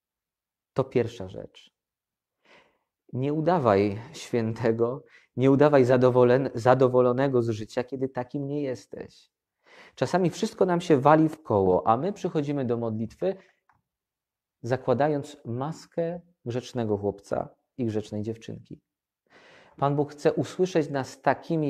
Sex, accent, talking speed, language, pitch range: male, native, 110 wpm, Polish, 110-145 Hz